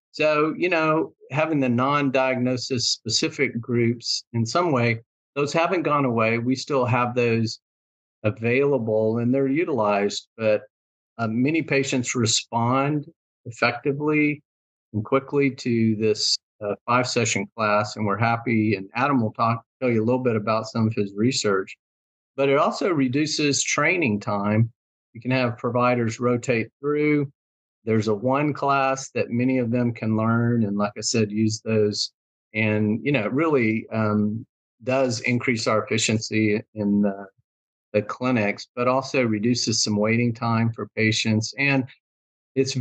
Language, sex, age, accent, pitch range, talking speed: English, male, 50-69, American, 110-130 Hz, 145 wpm